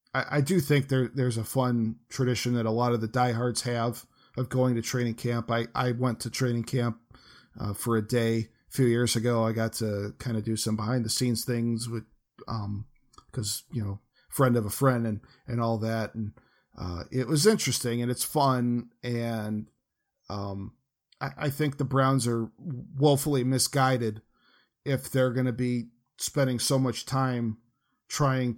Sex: male